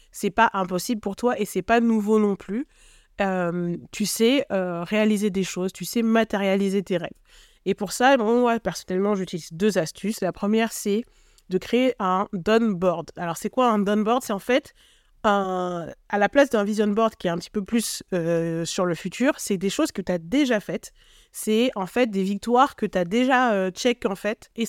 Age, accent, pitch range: 20-39, French, 195-240 Hz